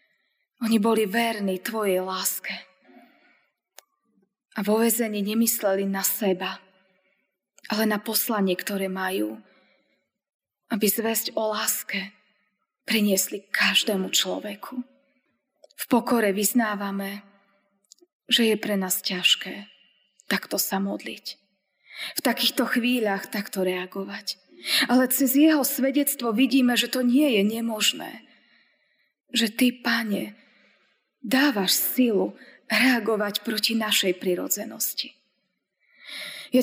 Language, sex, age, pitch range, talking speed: Slovak, female, 20-39, 205-255 Hz, 95 wpm